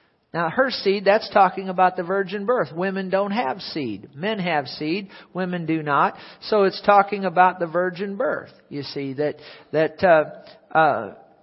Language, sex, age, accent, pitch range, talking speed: English, male, 50-69, American, 170-210 Hz, 170 wpm